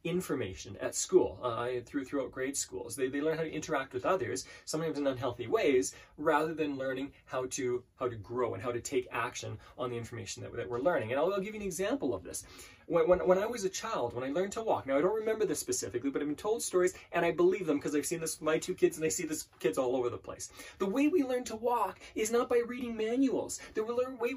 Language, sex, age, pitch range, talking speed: English, male, 20-39, 155-245 Hz, 260 wpm